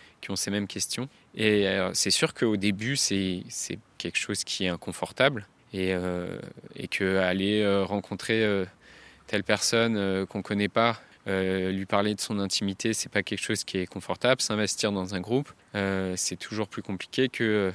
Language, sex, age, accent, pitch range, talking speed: French, male, 20-39, French, 100-125 Hz, 190 wpm